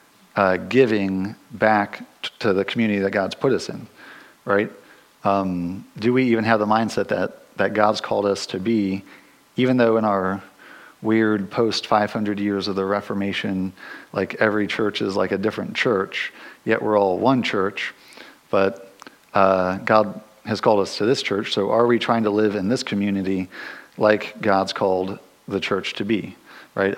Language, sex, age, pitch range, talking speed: English, male, 50-69, 95-110 Hz, 170 wpm